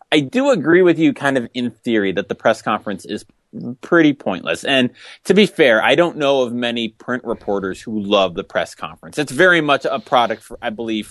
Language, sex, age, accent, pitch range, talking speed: English, male, 30-49, American, 105-140 Hz, 215 wpm